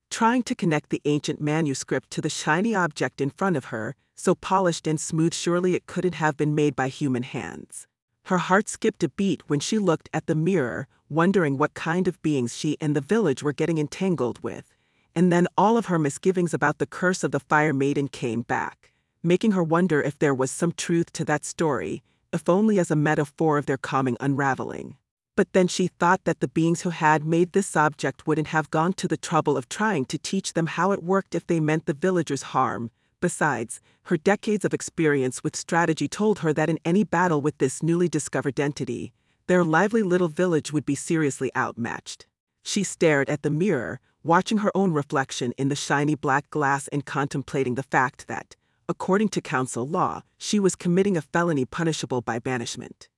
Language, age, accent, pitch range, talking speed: English, 40-59, American, 140-180 Hz, 195 wpm